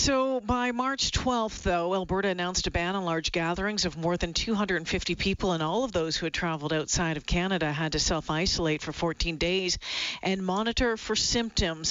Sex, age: female, 50-69